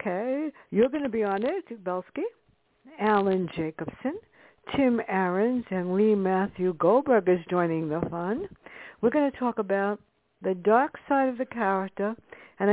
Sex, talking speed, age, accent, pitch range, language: female, 150 wpm, 60-79, American, 195-250 Hz, English